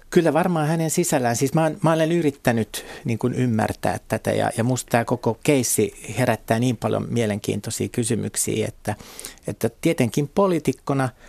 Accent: native